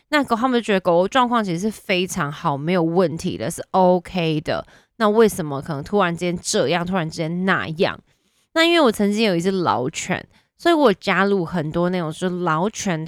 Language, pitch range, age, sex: Chinese, 165-205 Hz, 20-39, female